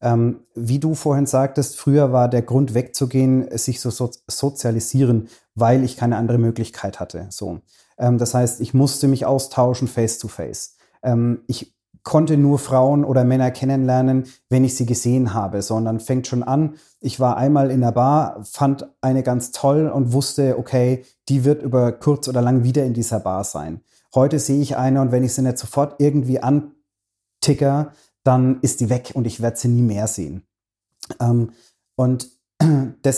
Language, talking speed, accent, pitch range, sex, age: German, 175 wpm, German, 115-135 Hz, male, 30-49